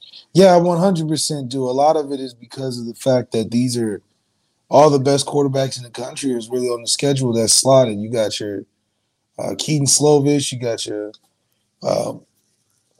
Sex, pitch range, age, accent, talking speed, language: male, 120-145 Hz, 20-39, American, 185 wpm, English